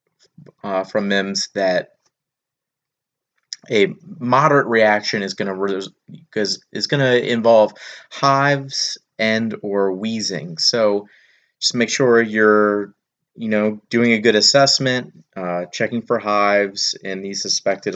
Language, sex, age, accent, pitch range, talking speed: English, male, 30-49, American, 100-115 Hz, 125 wpm